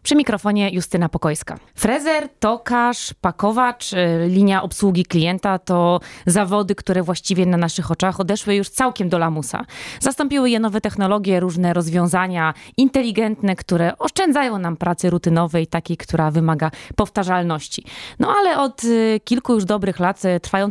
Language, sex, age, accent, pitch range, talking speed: Polish, female, 20-39, native, 170-220 Hz, 135 wpm